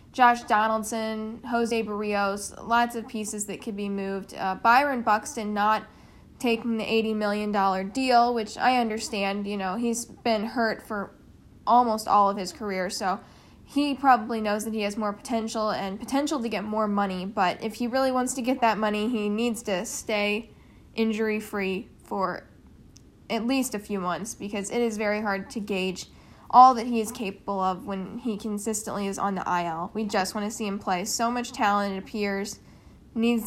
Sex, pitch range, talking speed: female, 200-230 Hz, 185 wpm